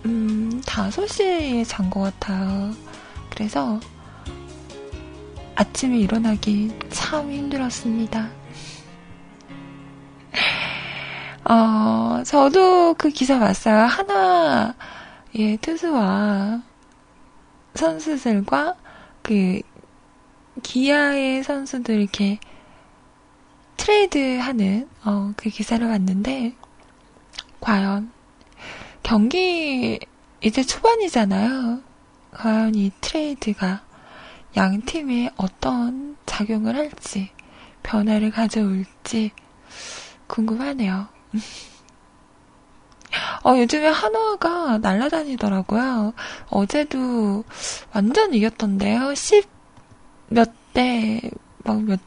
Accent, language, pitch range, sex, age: native, Korean, 205-275 Hz, female, 20-39